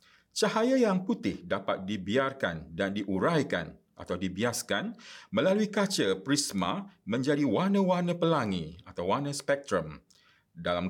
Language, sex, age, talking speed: Malay, male, 50-69, 105 wpm